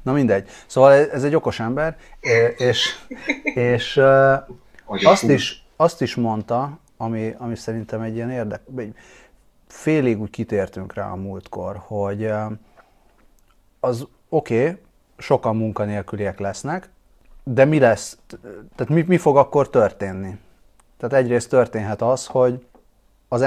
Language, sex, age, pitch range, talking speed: Hungarian, male, 30-49, 100-130 Hz, 125 wpm